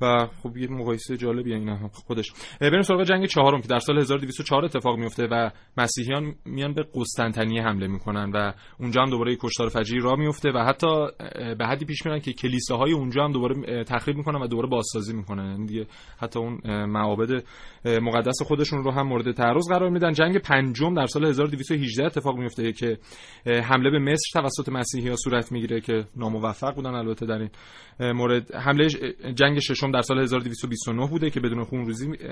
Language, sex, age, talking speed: Persian, male, 30-49, 170 wpm